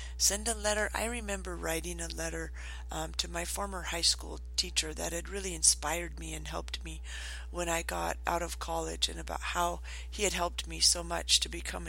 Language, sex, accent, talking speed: English, female, American, 200 wpm